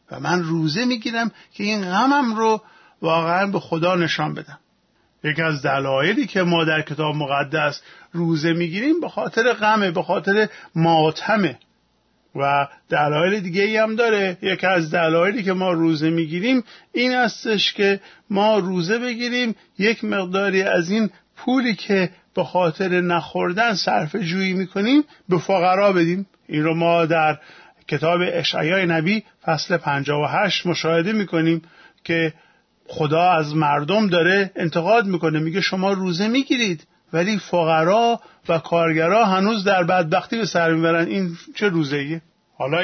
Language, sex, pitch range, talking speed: Persian, male, 160-205 Hz, 145 wpm